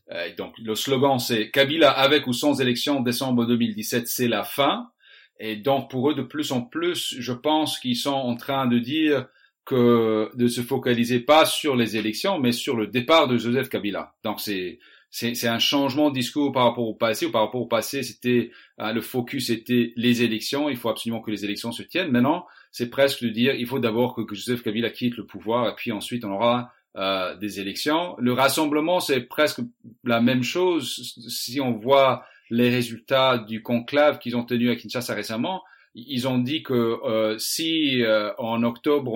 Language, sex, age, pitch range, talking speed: English, male, 40-59, 115-135 Hz, 195 wpm